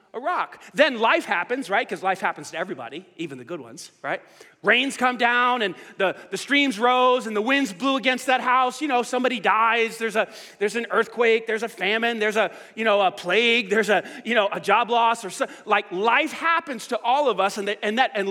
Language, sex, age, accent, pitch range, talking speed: English, male, 30-49, American, 200-270 Hz, 230 wpm